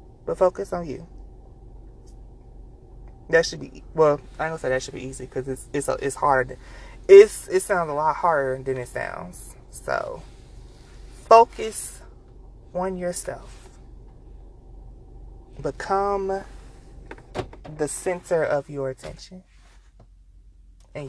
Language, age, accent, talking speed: English, 20-39, American, 120 wpm